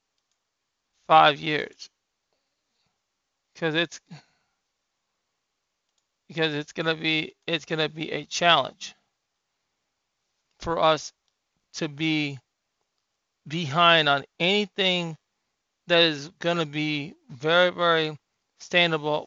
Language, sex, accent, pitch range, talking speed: English, male, American, 155-185 Hz, 85 wpm